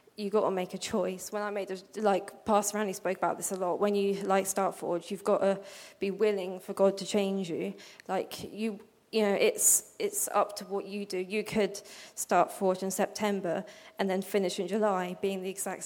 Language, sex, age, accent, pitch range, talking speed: English, female, 20-39, British, 195-215 Hz, 220 wpm